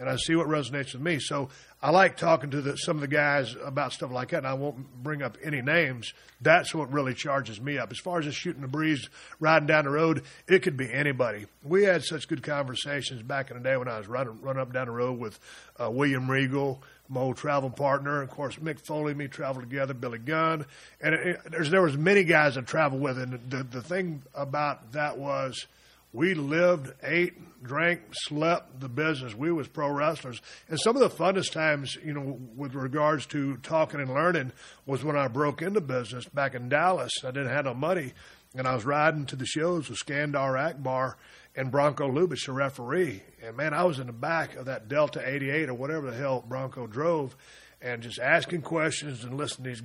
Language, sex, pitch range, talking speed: English, male, 130-155 Hz, 220 wpm